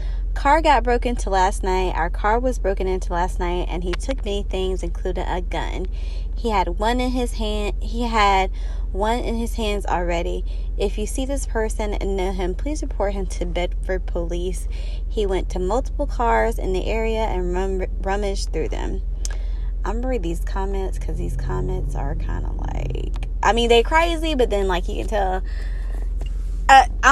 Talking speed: 185 wpm